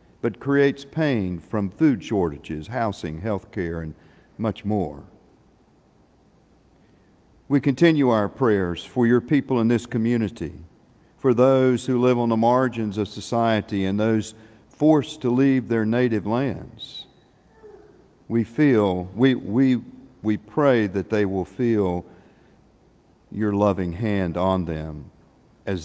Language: English